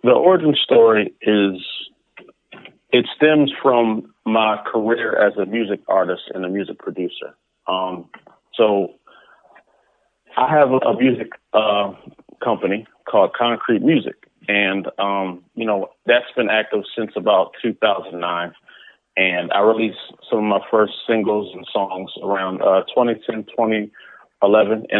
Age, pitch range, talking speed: 40-59, 100-120 Hz, 120 wpm